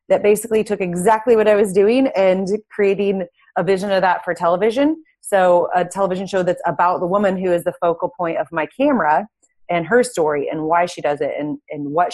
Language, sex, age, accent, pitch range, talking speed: English, female, 30-49, American, 160-205 Hz, 215 wpm